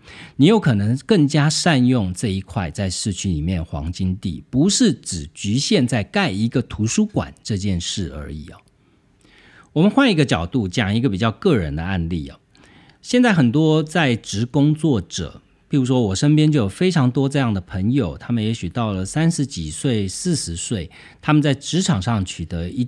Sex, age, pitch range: male, 50-69, 90-135 Hz